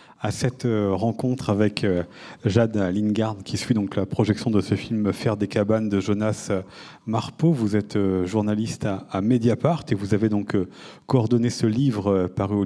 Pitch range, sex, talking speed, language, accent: 100-120 Hz, male, 160 wpm, French, French